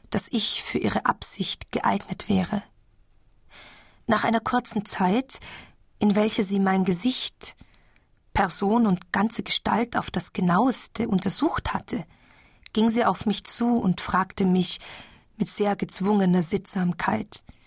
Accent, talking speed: German, 125 wpm